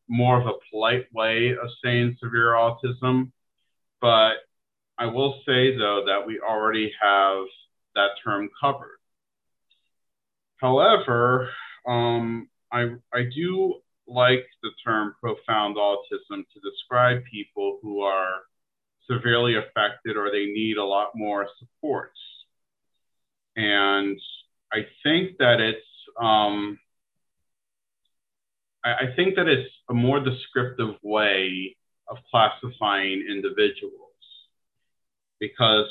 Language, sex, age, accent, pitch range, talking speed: English, male, 40-59, American, 105-130 Hz, 105 wpm